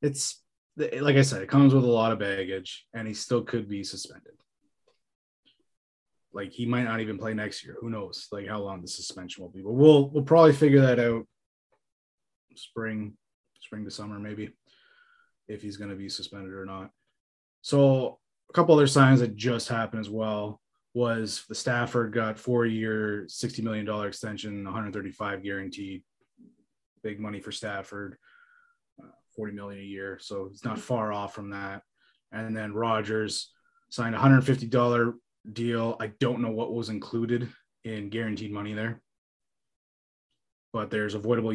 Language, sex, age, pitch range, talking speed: English, male, 20-39, 105-125 Hz, 160 wpm